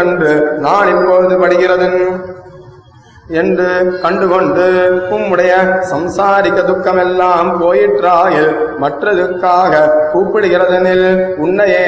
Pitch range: 175-185 Hz